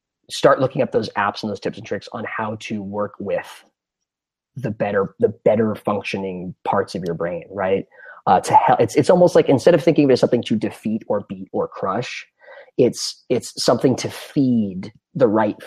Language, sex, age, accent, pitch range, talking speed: English, male, 30-49, American, 105-125 Hz, 190 wpm